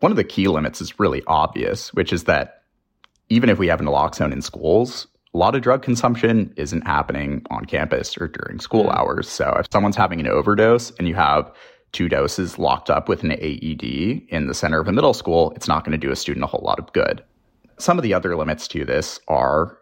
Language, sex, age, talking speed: English, male, 30-49, 225 wpm